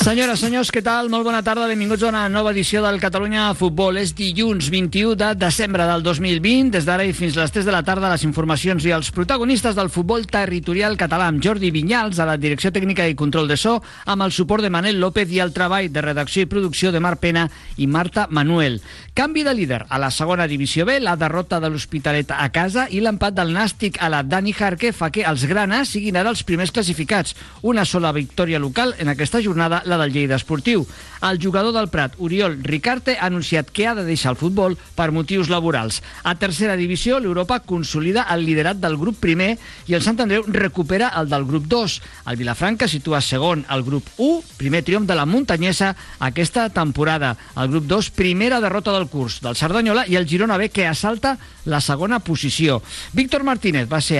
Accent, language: Spanish, Spanish